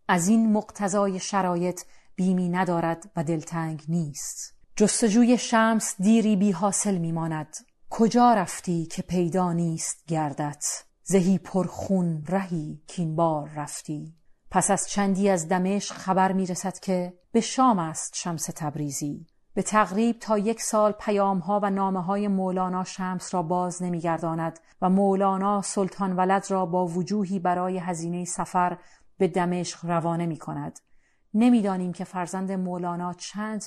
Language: Persian